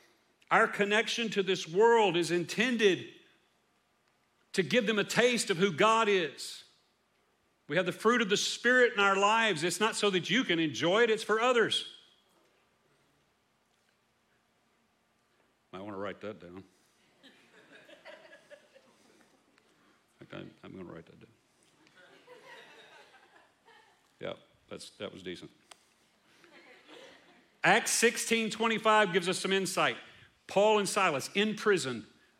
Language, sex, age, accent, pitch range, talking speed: English, male, 50-69, American, 170-225 Hz, 120 wpm